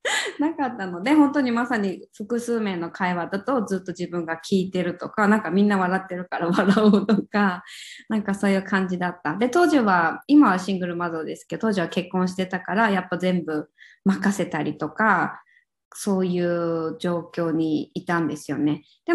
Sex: female